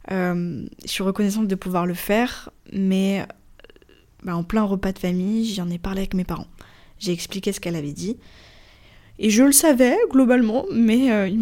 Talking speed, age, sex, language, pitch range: 190 wpm, 20-39, female, French, 185-220 Hz